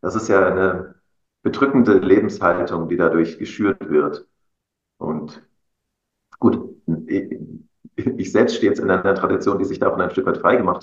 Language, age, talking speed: German, 40-59, 145 wpm